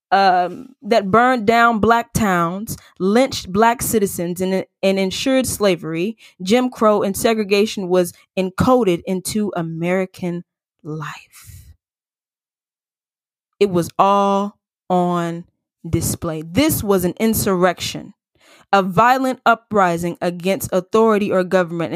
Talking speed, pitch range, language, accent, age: 105 wpm, 180-225 Hz, English, American, 20-39